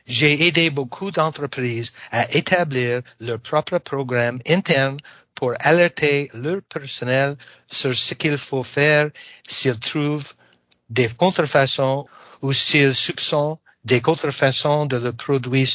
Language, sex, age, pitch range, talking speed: French, male, 60-79, 125-155 Hz, 120 wpm